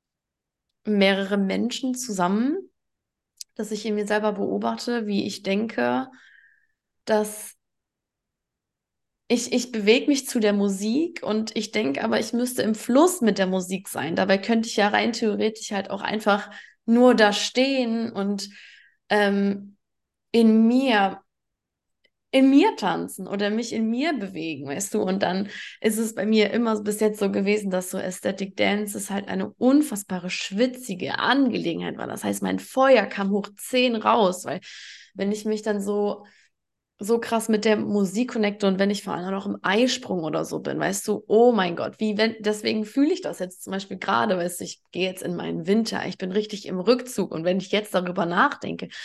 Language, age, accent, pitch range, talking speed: German, 20-39, German, 195-230 Hz, 175 wpm